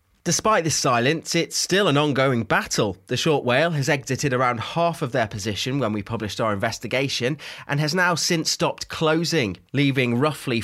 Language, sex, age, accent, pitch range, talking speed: English, male, 20-39, British, 115-155 Hz, 175 wpm